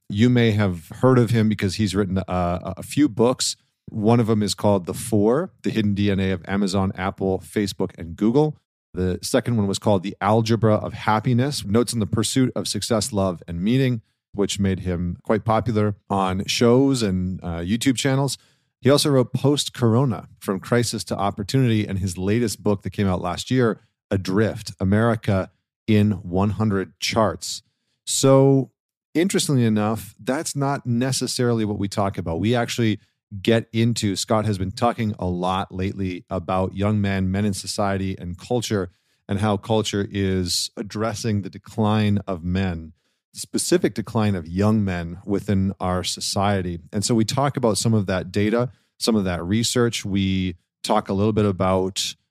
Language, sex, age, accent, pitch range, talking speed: English, male, 40-59, American, 95-115 Hz, 165 wpm